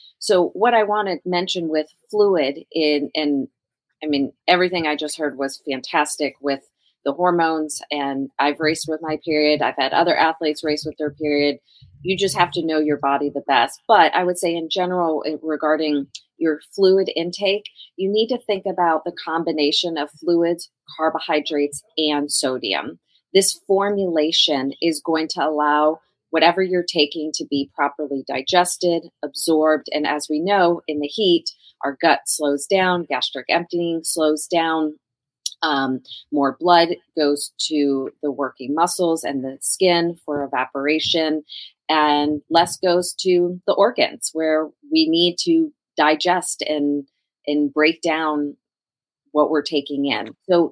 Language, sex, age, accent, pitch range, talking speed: English, female, 30-49, American, 145-175 Hz, 150 wpm